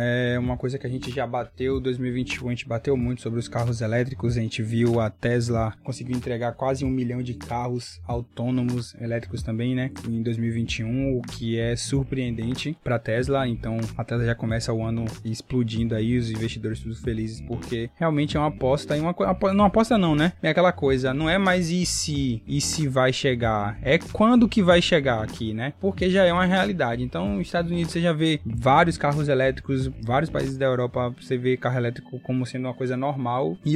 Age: 20-39